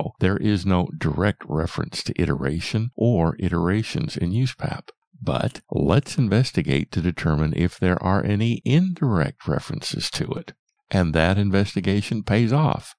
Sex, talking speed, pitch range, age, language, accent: male, 135 wpm, 90-130 Hz, 50-69, English, American